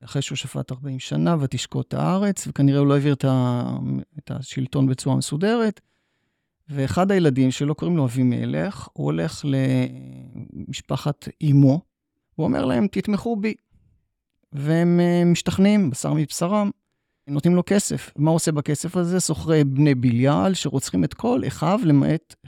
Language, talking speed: Hebrew, 145 wpm